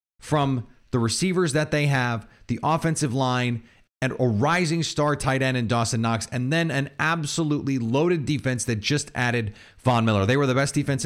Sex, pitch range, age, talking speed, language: male, 115-155 Hz, 30-49, 185 wpm, English